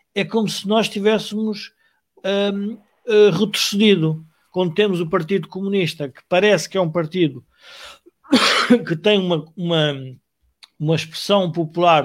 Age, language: 50-69, Portuguese